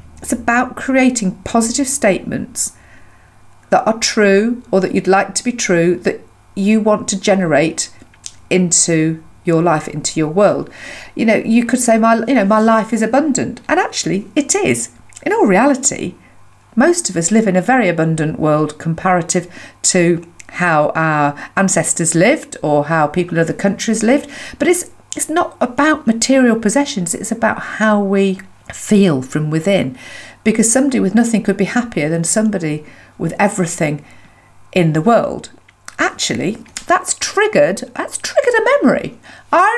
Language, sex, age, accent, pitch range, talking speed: English, female, 50-69, British, 175-245 Hz, 155 wpm